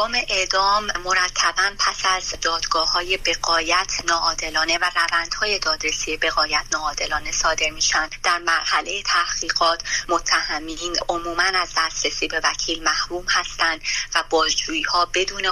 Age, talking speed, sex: 30-49, 110 wpm, female